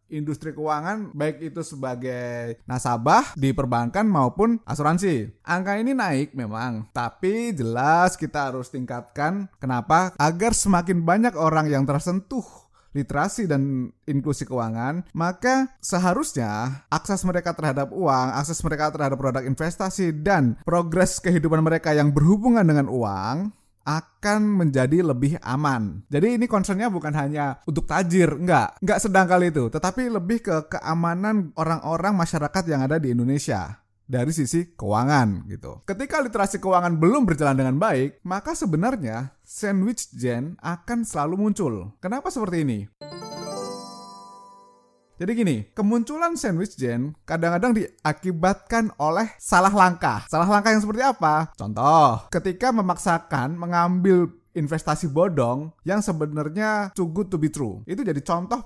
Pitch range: 130-190 Hz